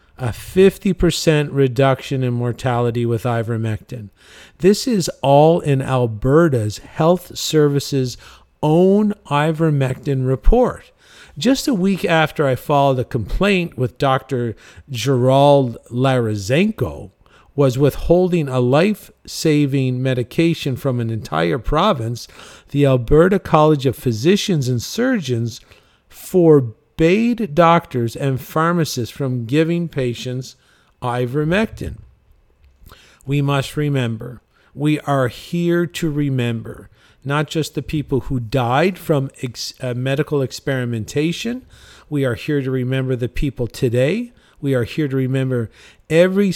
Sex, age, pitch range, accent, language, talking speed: male, 50-69, 125-165 Hz, American, English, 110 wpm